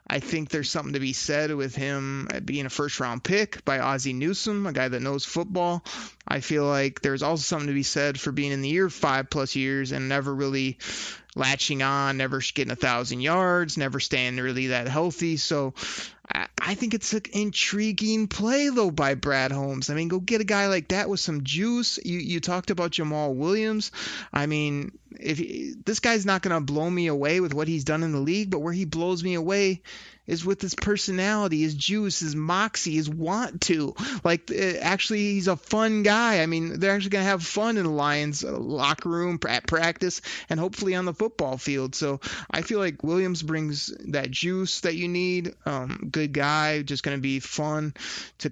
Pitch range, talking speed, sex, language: 145-185 Hz, 205 wpm, male, English